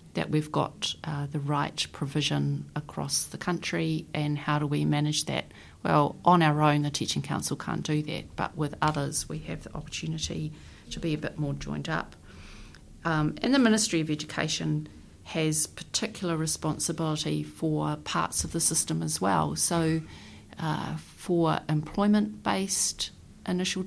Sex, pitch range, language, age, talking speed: female, 145-165 Hz, English, 40-59, 155 wpm